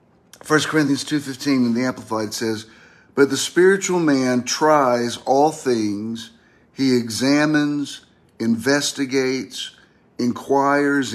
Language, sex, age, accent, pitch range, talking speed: English, male, 50-69, American, 115-145 Hz, 95 wpm